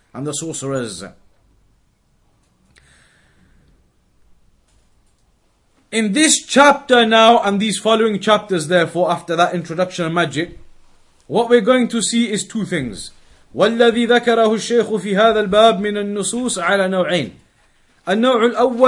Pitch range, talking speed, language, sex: 175-225 Hz, 85 wpm, English, male